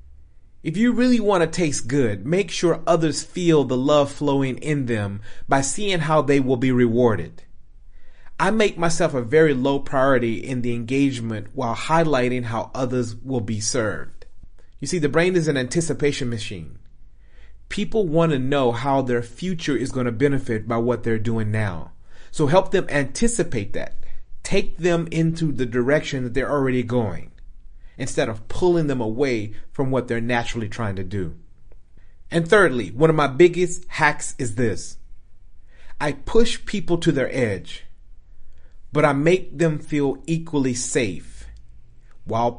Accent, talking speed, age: American, 160 wpm, 30-49